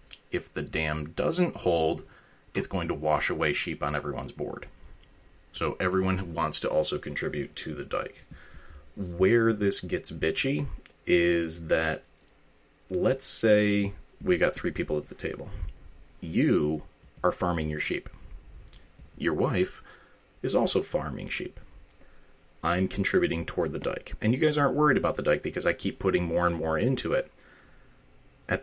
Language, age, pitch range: English, 30-49, 80-110 Hz